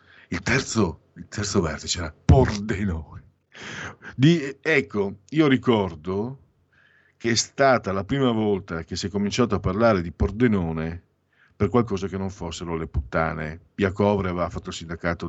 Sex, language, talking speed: male, Italian, 145 wpm